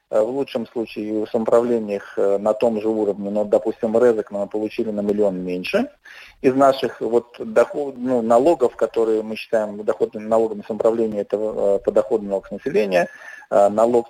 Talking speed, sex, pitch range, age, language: 140 wpm, male, 105-145 Hz, 20-39, Russian